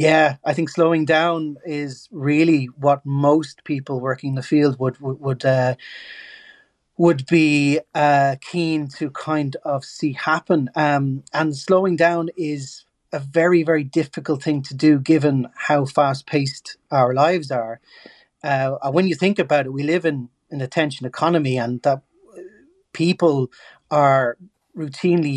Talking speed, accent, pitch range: 145 wpm, Irish, 135-165 Hz